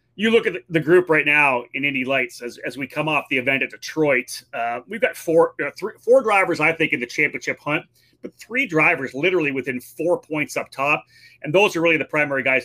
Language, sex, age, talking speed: English, male, 30-49, 235 wpm